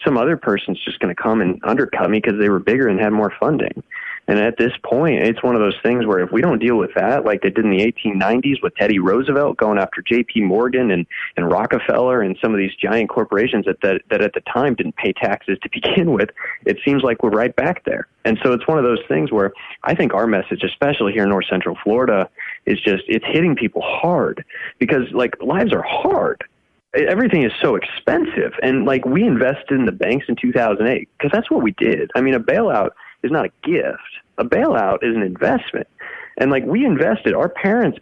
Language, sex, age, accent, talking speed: English, male, 30-49, American, 225 wpm